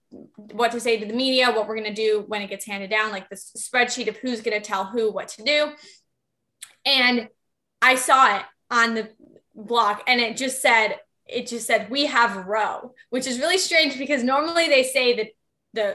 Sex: female